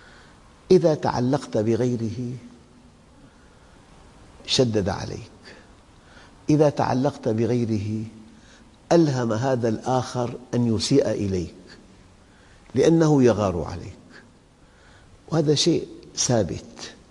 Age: 50-69